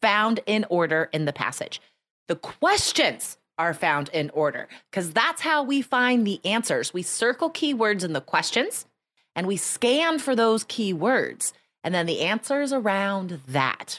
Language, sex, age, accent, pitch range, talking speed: English, female, 30-49, American, 185-255 Hz, 160 wpm